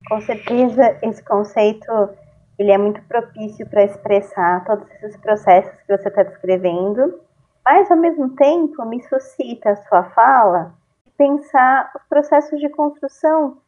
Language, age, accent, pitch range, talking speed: Portuguese, 20-39, Brazilian, 205-275 Hz, 135 wpm